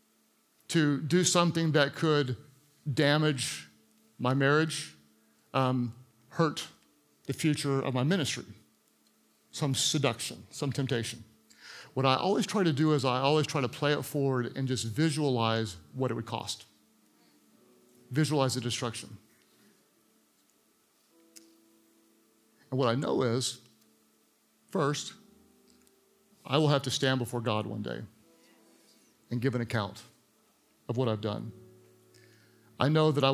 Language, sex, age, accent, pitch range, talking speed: English, male, 50-69, American, 110-135 Hz, 125 wpm